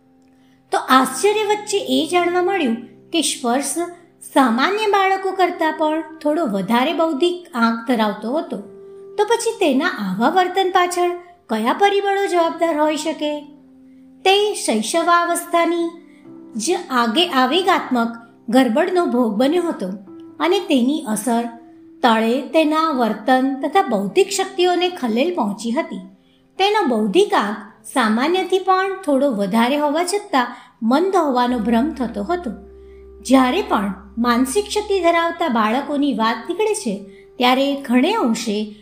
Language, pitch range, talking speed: Gujarati, 235-360 Hz, 35 wpm